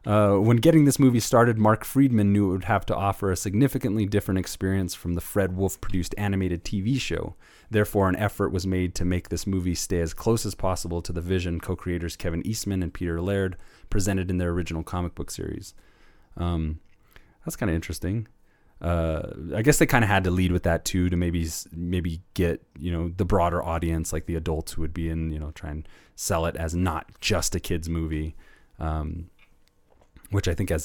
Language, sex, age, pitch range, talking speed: English, male, 30-49, 85-100 Hz, 205 wpm